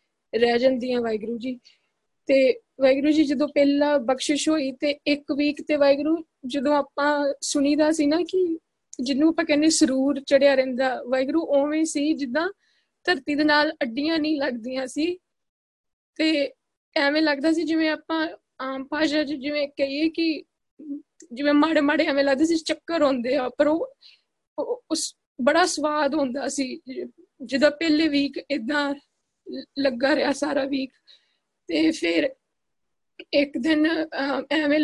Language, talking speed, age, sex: Punjabi, 135 wpm, 20-39, female